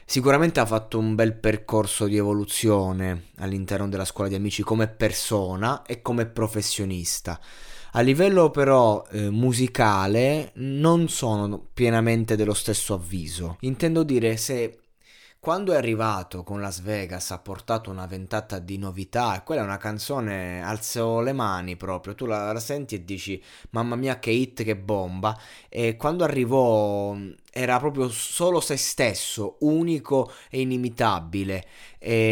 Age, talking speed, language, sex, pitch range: 20-39, 140 wpm, Italian, male, 105-135 Hz